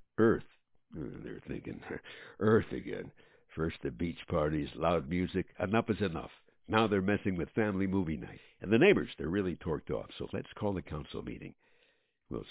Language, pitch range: English, 90-130 Hz